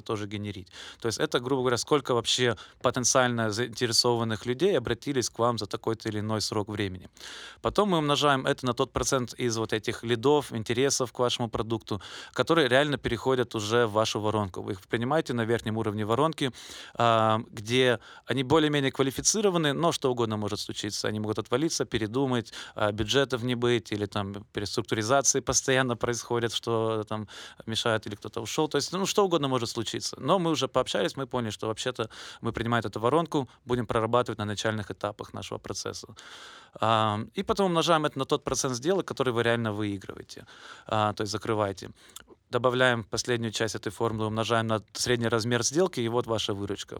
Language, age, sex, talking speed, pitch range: Russian, 20-39, male, 170 wpm, 110-130 Hz